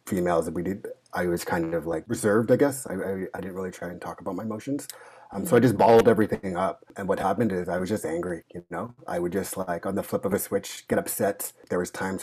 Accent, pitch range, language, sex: American, 95-115 Hz, English, male